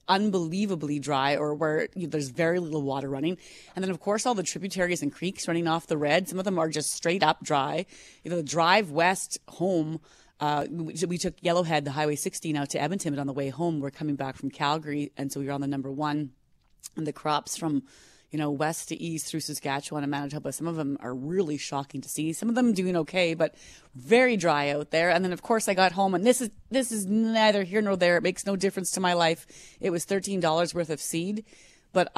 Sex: female